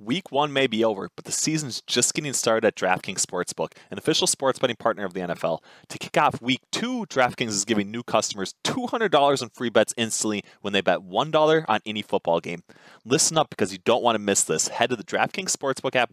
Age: 20-39